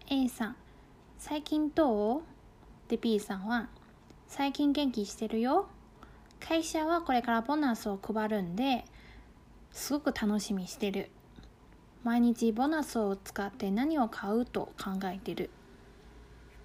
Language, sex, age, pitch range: Chinese, female, 20-39, 210-295 Hz